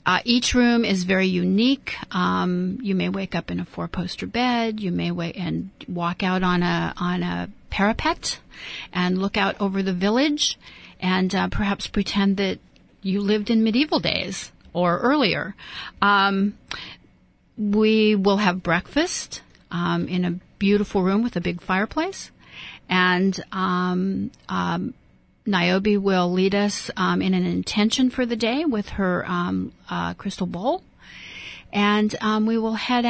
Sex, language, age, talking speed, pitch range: female, English, 40-59, 150 wpm, 180-225 Hz